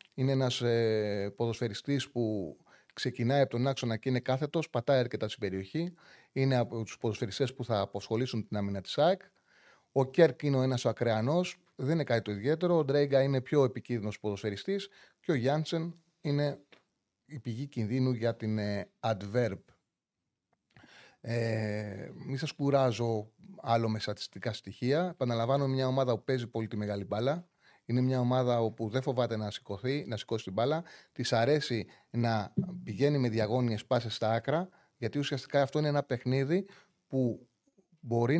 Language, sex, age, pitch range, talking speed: Greek, male, 30-49, 115-145 Hz, 160 wpm